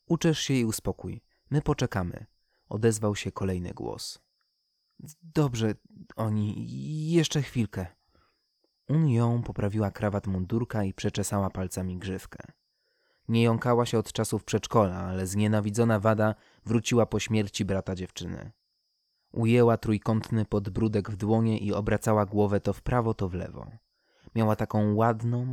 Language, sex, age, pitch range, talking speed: Polish, male, 20-39, 100-120 Hz, 125 wpm